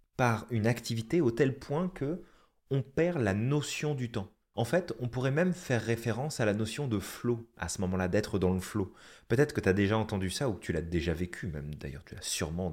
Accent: French